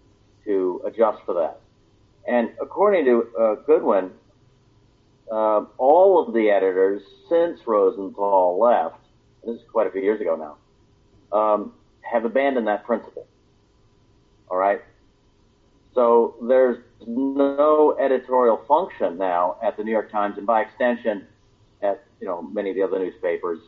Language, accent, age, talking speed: English, American, 50-69, 140 wpm